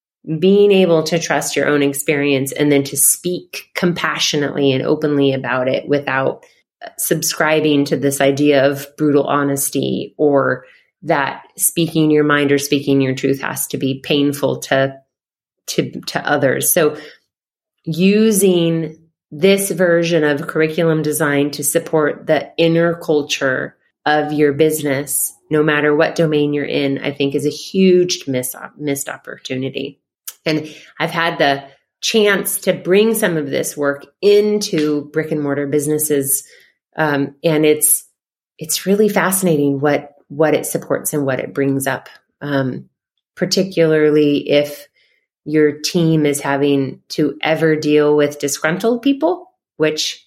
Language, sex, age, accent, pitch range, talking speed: English, female, 30-49, American, 145-170 Hz, 140 wpm